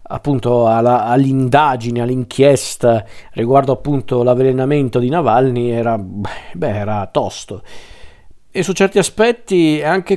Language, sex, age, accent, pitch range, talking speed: Italian, male, 50-69, native, 120-150 Hz, 105 wpm